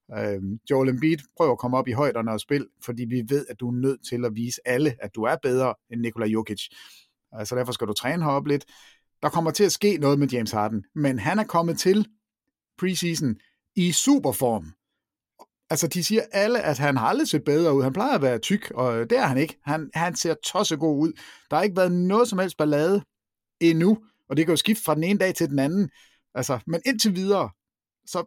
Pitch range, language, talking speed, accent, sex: 125-165 Hz, Danish, 225 wpm, native, male